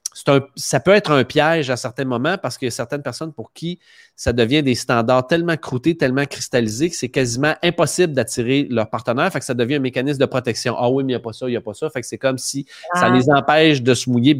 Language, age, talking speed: French, 30-49, 285 wpm